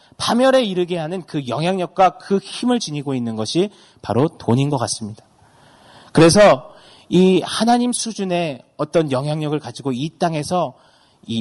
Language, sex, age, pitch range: Korean, male, 30-49, 120-175 Hz